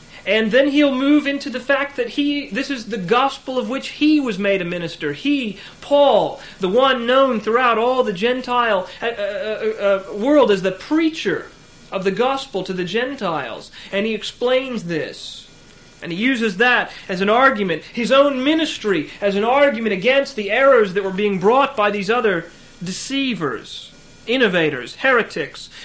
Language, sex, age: English, male, 30-49